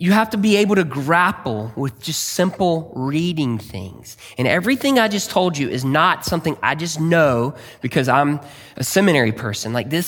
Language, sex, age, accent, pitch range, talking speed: English, male, 20-39, American, 125-200 Hz, 185 wpm